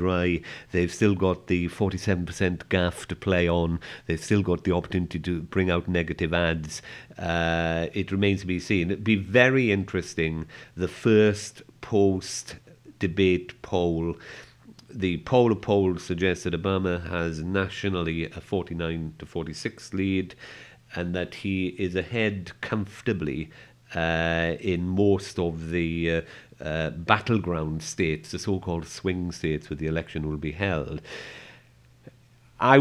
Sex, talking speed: male, 130 wpm